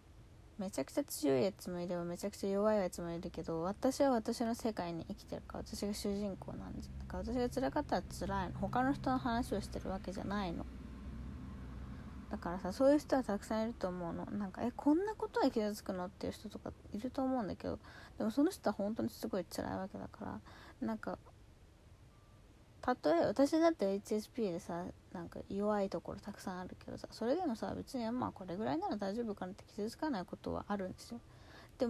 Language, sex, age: Japanese, female, 20-39